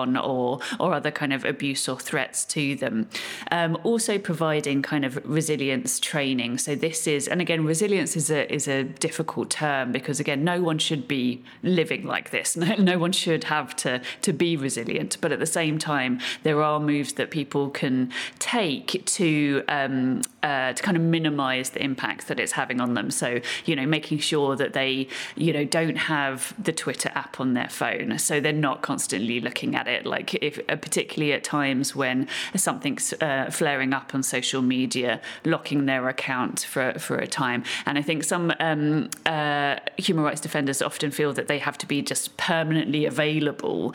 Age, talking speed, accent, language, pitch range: 30-49, 185 wpm, British, English, 135-165 Hz